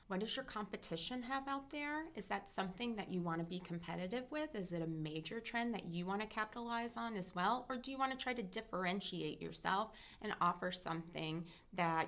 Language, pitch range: English, 175-230 Hz